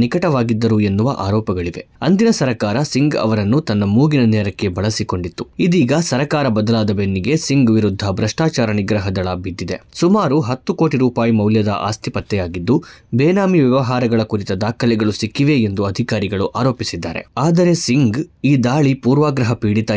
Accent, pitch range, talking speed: native, 100-130 Hz, 125 wpm